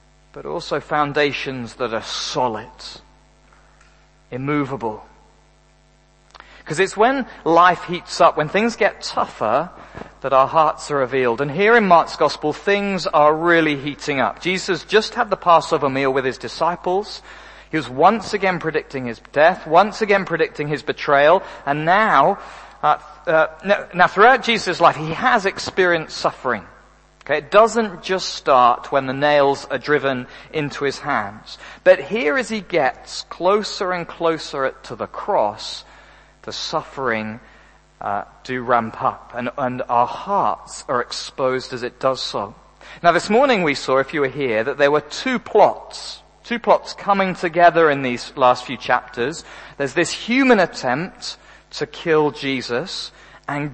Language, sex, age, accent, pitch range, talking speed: English, male, 40-59, British, 135-190 Hz, 150 wpm